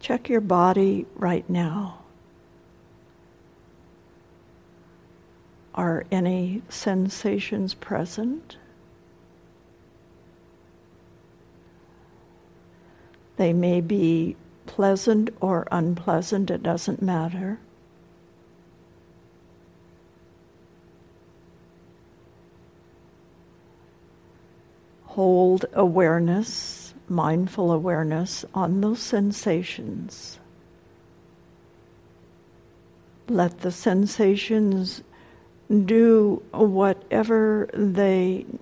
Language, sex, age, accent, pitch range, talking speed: English, female, 60-79, American, 170-205 Hz, 50 wpm